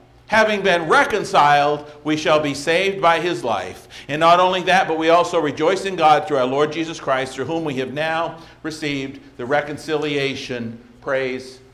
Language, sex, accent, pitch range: English, male, American, 125-155 Hz